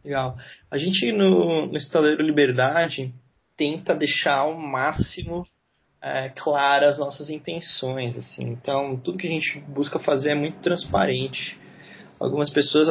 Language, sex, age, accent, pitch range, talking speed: Portuguese, male, 20-39, Brazilian, 125-155 Hz, 135 wpm